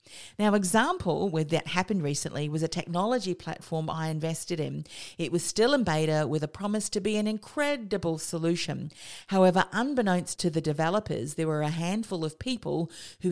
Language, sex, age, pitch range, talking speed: English, female, 40-59, 155-195 Hz, 170 wpm